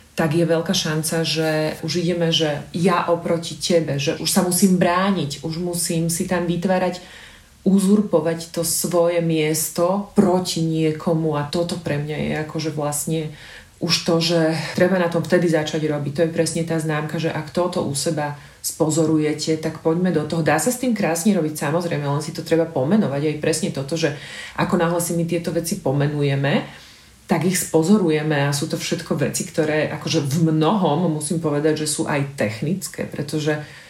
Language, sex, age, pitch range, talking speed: Slovak, female, 40-59, 155-175 Hz, 175 wpm